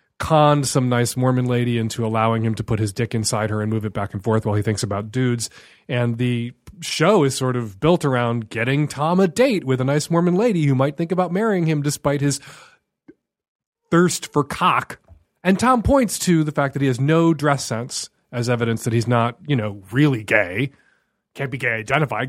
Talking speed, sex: 210 wpm, male